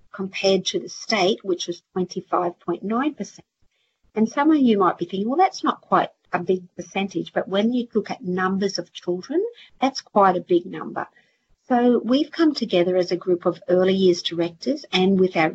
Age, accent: 50-69, Australian